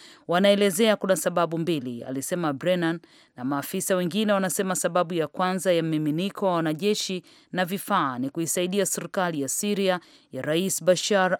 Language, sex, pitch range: English, female, 160-190 Hz